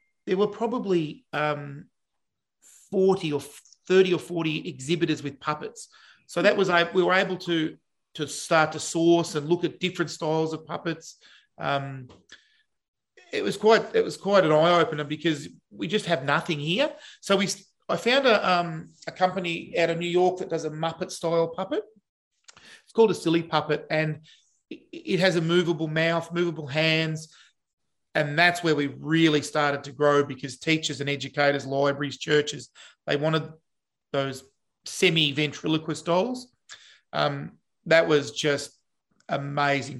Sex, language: male, English